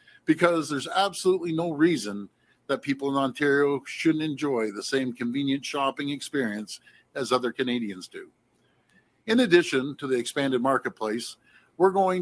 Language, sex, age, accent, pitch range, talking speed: English, male, 50-69, American, 135-175 Hz, 140 wpm